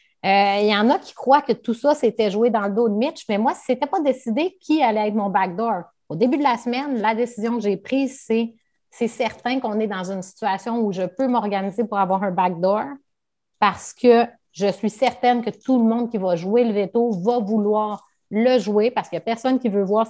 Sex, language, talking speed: female, French, 240 wpm